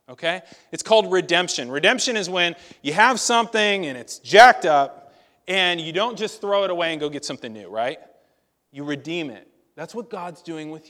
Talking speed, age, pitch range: 195 wpm, 30-49, 150-210 Hz